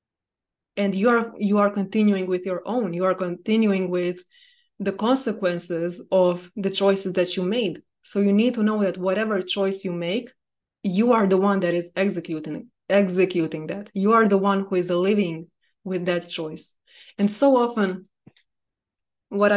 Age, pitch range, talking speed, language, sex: 20-39, 185-220 Hz, 165 wpm, English, female